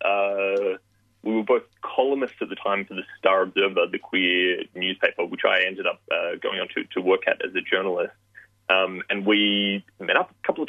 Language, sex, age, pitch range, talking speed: English, male, 30-49, 95-155 Hz, 210 wpm